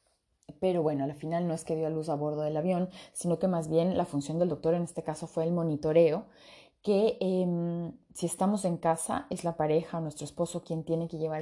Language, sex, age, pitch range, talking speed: Spanish, female, 20-39, 155-180 Hz, 230 wpm